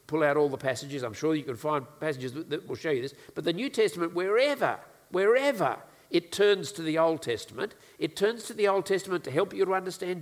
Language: English